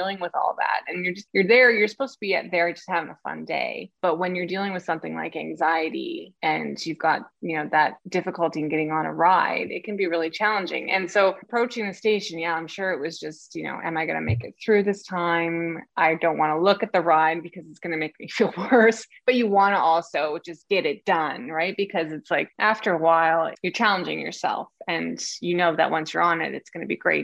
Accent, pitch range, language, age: American, 160-200 Hz, English, 20-39